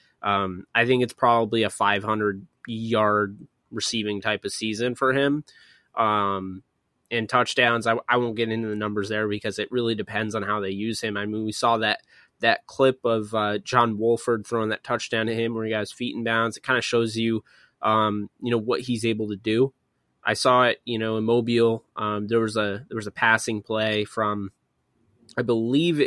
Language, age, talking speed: English, 20-39, 205 wpm